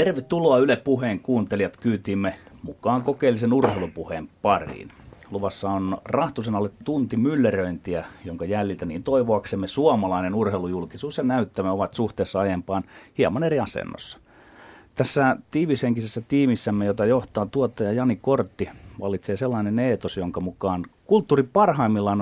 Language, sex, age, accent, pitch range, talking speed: Finnish, male, 30-49, native, 95-130 Hz, 115 wpm